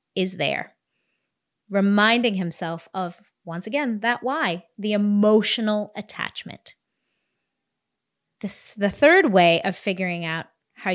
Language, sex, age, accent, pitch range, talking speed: English, female, 30-49, American, 180-220 Hz, 110 wpm